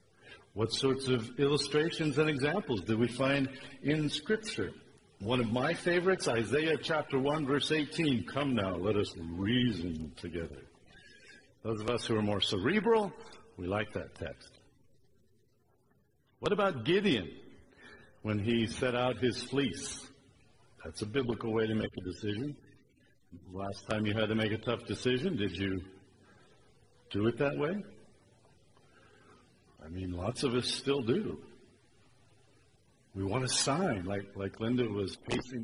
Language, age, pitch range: English, 60-79, 105-155 Hz